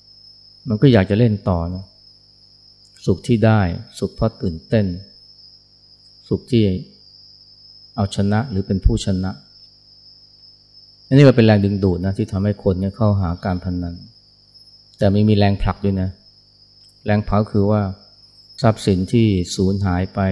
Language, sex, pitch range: Thai, male, 100-105 Hz